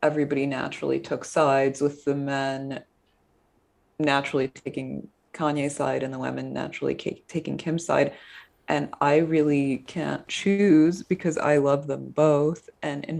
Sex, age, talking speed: female, 20-39, 135 wpm